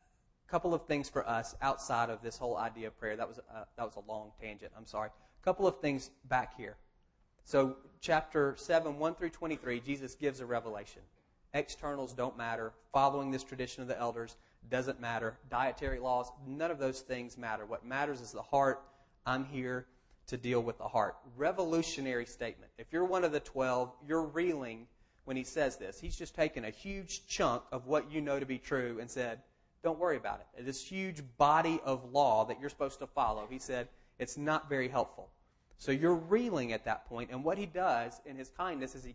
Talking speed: 205 wpm